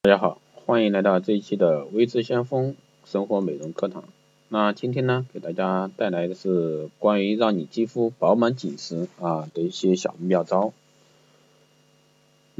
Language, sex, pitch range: Chinese, male, 95-120 Hz